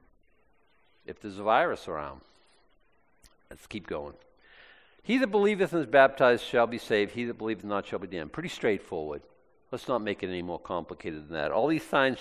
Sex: male